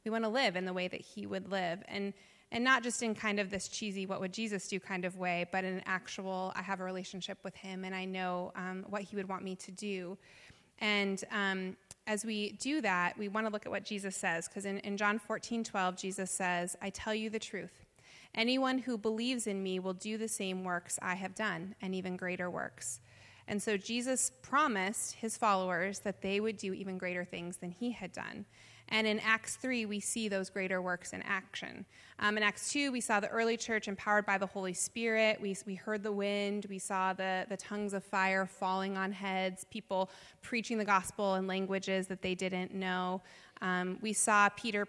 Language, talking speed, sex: English, 215 wpm, female